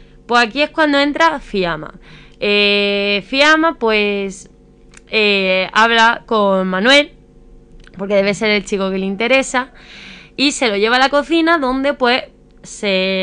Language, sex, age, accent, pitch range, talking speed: Spanish, female, 20-39, Spanish, 195-260 Hz, 140 wpm